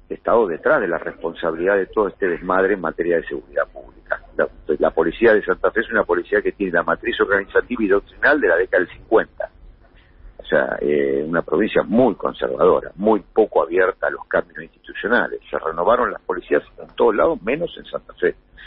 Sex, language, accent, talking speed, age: male, Spanish, Argentinian, 195 wpm, 50-69